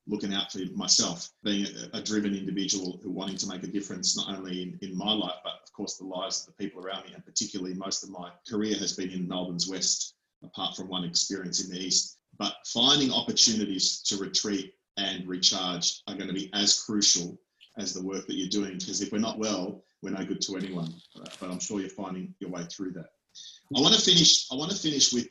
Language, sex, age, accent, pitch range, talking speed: English, male, 30-49, Australian, 95-135 Hz, 225 wpm